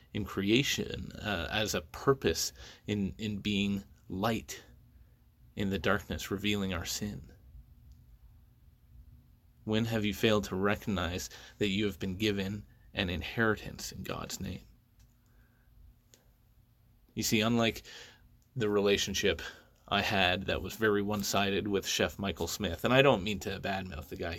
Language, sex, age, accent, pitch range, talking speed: English, male, 30-49, American, 95-115 Hz, 135 wpm